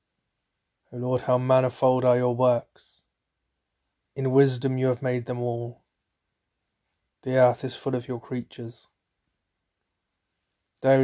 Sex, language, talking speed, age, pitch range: male, English, 115 wpm, 30-49, 115-130 Hz